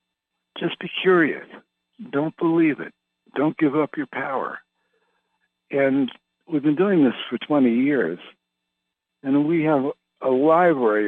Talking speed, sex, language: 130 wpm, male, English